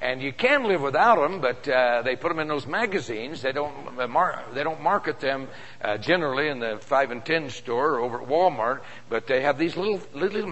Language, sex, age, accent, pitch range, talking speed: English, male, 60-79, American, 115-150 Hz, 235 wpm